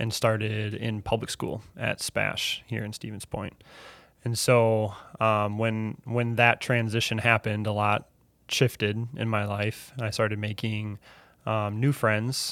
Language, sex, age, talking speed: English, male, 20-39, 150 wpm